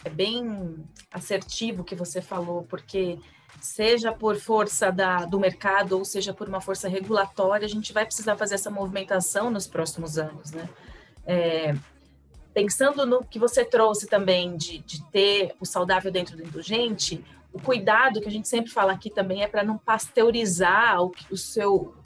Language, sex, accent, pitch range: Portuguese, female, Brazilian, 190-235 Hz